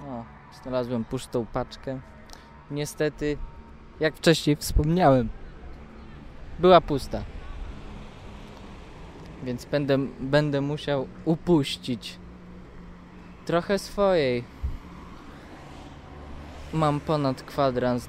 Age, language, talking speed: 20-39, Polish, 65 wpm